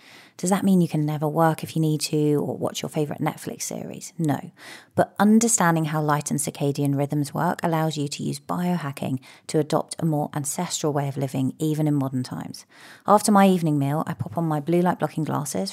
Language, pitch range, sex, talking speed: English, 150-180 Hz, female, 210 wpm